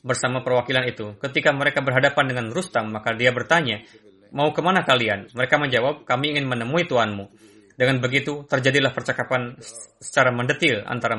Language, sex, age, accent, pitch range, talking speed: Indonesian, male, 20-39, native, 115-145 Hz, 145 wpm